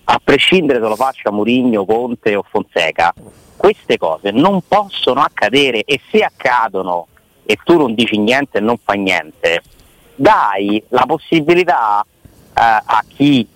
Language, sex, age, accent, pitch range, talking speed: Italian, male, 30-49, native, 100-145 Hz, 145 wpm